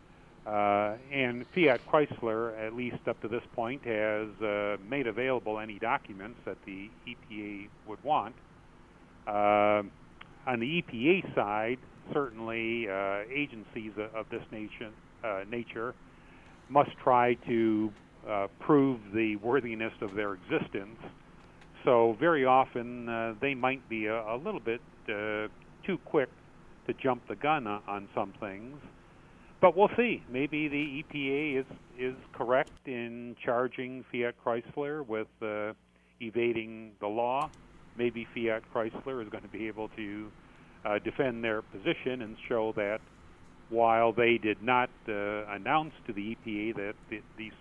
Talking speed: 140 wpm